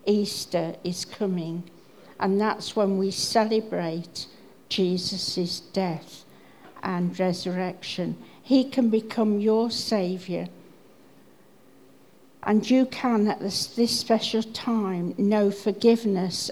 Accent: British